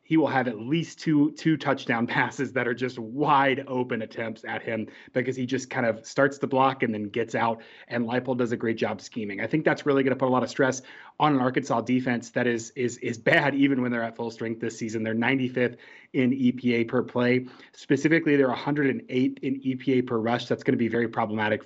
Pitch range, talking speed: 115-140 Hz, 230 wpm